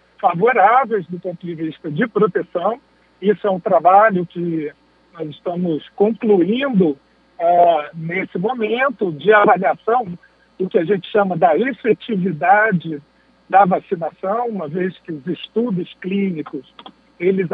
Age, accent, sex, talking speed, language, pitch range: 60-79, Brazilian, male, 120 wpm, Portuguese, 175-245 Hz